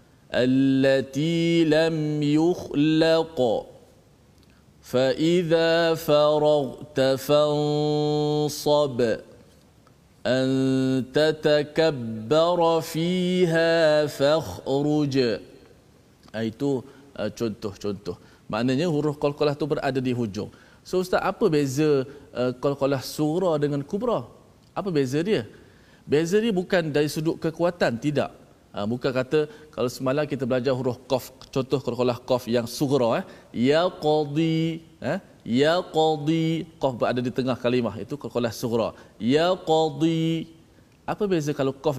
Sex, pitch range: male, 130-160 Hz